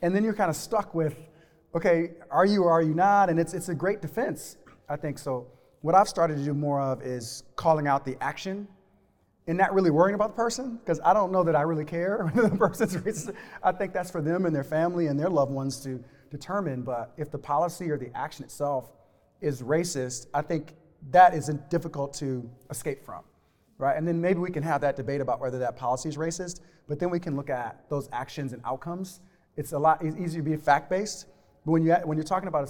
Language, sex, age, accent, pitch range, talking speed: English, male, 30-49, American, 140-175 Hz, 235 wpm